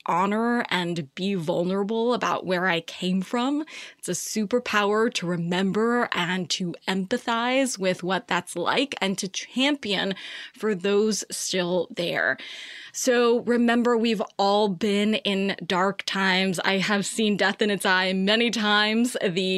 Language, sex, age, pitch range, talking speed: English, female, 20-39, 180-235 Hz, 140 wpm